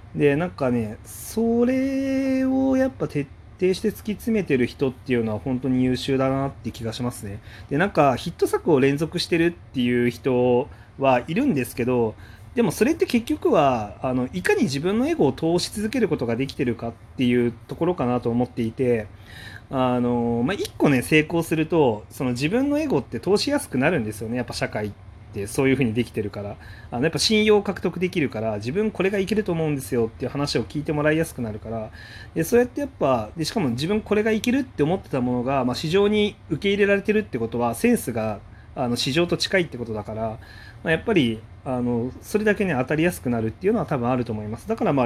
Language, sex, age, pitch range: Japanese, male, 30-49, 115-180 Hz